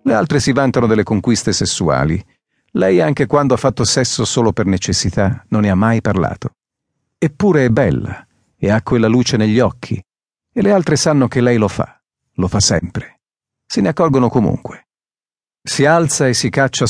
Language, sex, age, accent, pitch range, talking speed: Italian, male, 40-59, native, 100-135 Hz, 180 wpm